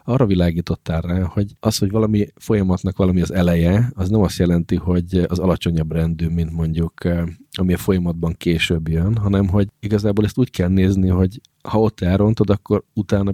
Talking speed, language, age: 175 wpm, Hungarian, 40-59